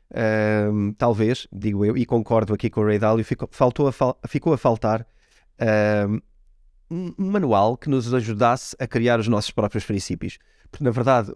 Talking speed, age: 170 wpm, 20-39